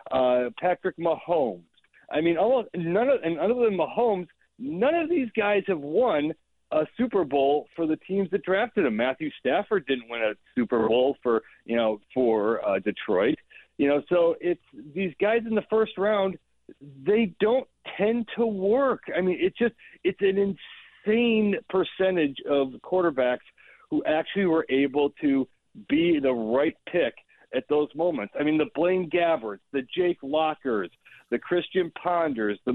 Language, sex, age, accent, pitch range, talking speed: English, male, 40-59, American, 155-215 Hz, 165 wpm